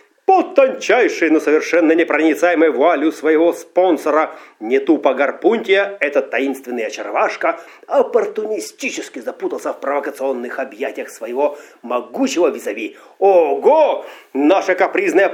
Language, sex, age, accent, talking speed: Russian, male, 30-49, native, 100 wpm